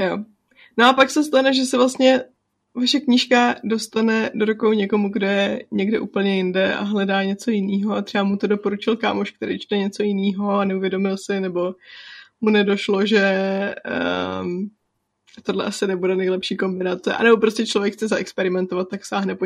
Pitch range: 195-230 Hz